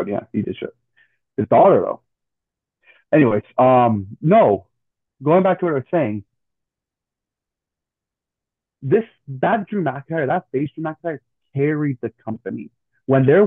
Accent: American